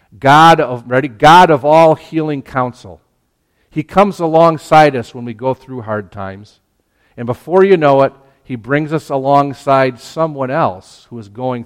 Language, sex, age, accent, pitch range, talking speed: English, male, 50-69, American, 105-140 Hz, 165 wpm